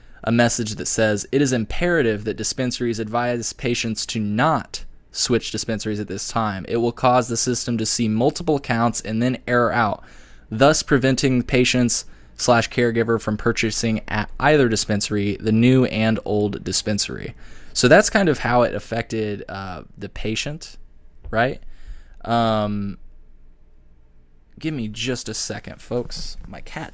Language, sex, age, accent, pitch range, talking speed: English, male, 20-39, American, 100-125 Hz, 145 wpm